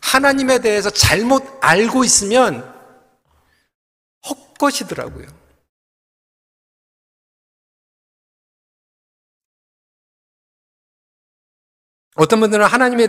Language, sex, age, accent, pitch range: Korean, male, 40-59, native, 195-260 Hz